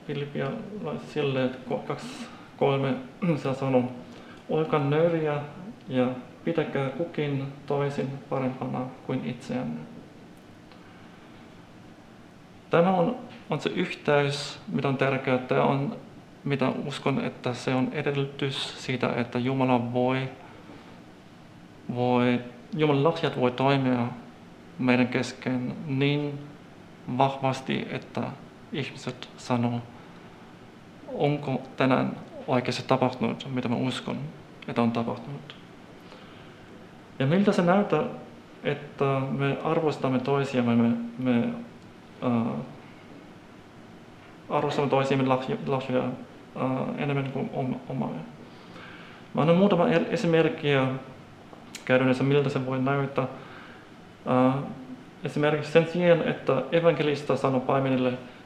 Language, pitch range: Finnish, 125-145 Hz